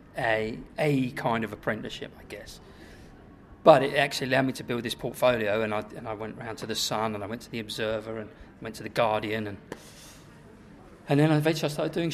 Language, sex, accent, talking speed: English, male, British, 215 wpm